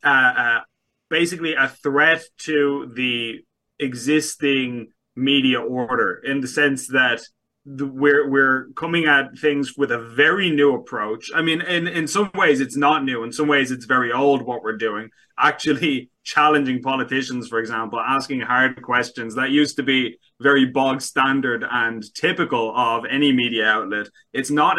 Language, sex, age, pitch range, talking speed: English, male, 20-39, 125-145 Hz, 155 wpm